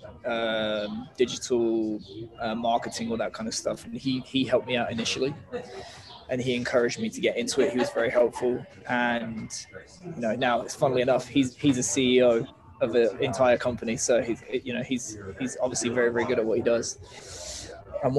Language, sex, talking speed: Italian, male, 190 wpm